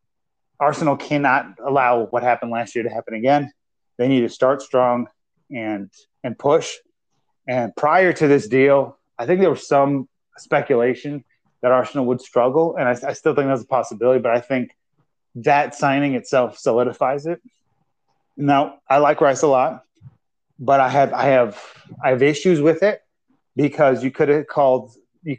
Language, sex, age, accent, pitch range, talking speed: English, male, 30-49, American, 125-150 Hz, 170 wpm